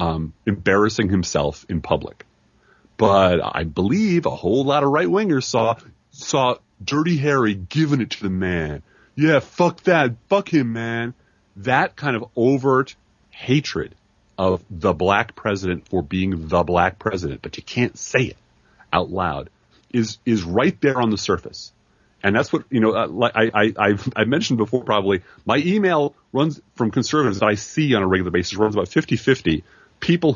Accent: American